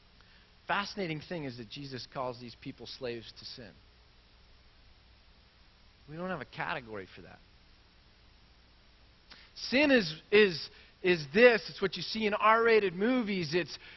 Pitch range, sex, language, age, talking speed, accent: 130-200 Hz, male, English, 40-59, 135 wpm, American